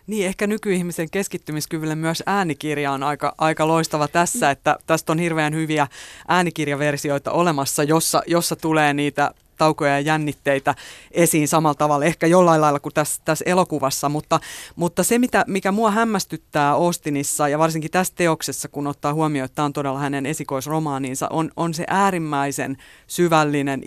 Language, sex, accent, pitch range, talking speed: Finnish, female, native, 145-170 Hz, 150 wpm